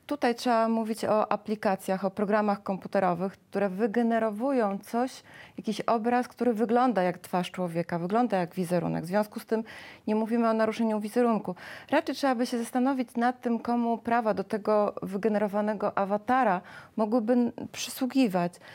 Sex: female